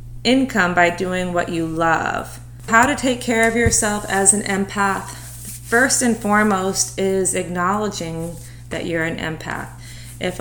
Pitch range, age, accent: 160-195 Hz, 30-49, American